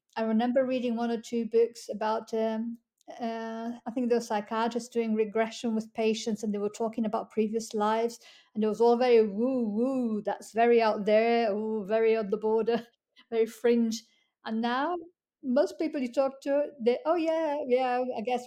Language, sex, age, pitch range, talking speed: English, female, 50-69, 220-250 Hz, 180 wpm